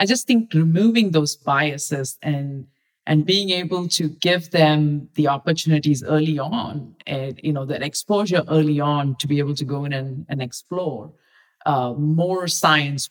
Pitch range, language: 145-175 Hz, English